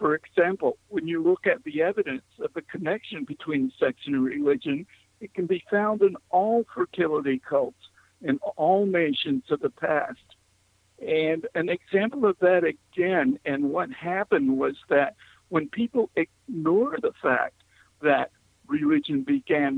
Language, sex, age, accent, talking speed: English, male, 60-79, American, 145 wpm